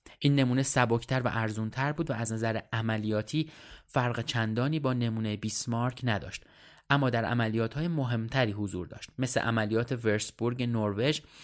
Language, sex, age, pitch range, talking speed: Persian, male, 20-39, 110-130 Hz, 135 wpm